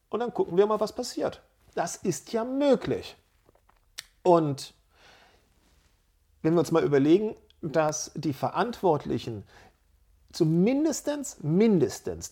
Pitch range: 140-190 Hz